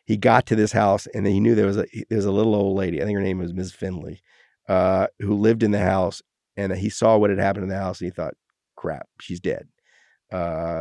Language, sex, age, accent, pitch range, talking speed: English, male, 40-59, American, 100-120 Hz, 245 wpm